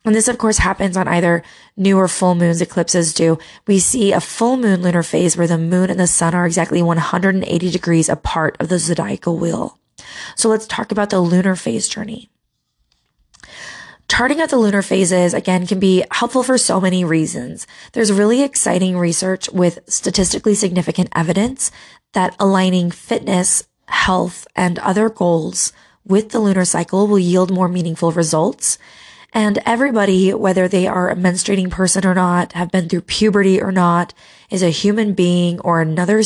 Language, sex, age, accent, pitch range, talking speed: English, female, 20-39, American, 175-210 Hz, 170 wpm